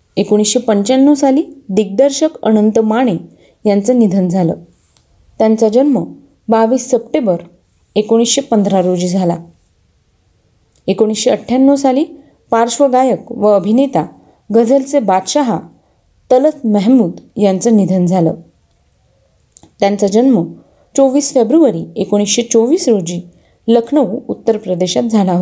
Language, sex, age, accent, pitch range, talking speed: Marathi, female, 30-49, native, 190-260 Hz, 90 wpm